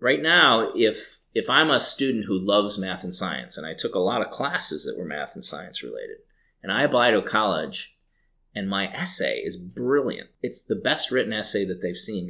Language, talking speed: English, 210 wpm